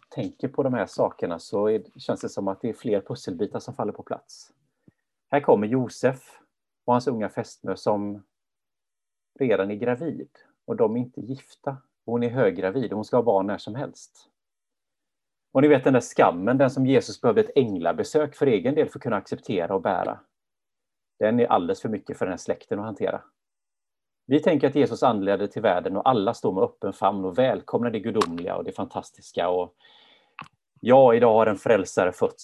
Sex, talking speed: male, 195 wpm